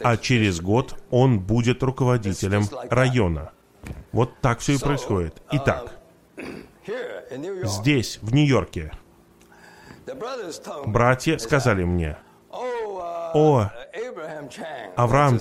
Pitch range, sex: 105-140 Hz, male